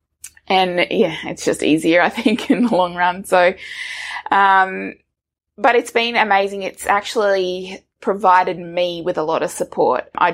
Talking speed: 155 wpm